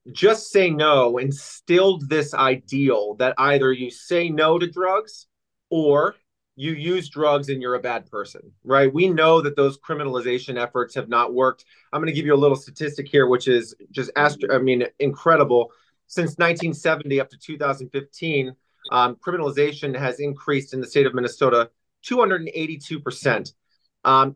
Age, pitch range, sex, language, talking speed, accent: 30-49, 130-165 Hz, male, English, 155 wpm, American